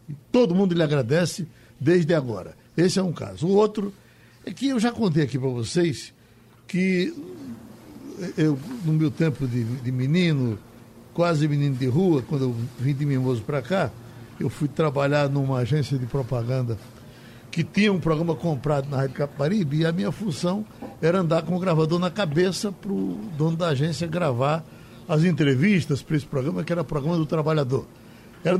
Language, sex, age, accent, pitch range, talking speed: Portuguese, male, 60-79, Brazilian, 135-180 Hz, 175 wpm